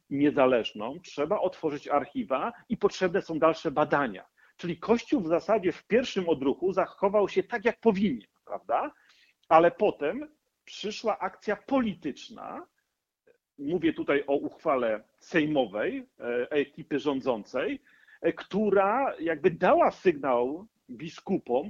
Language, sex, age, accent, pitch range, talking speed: Polish, male, 40-59, native, 140-225 Hz, 110 wpm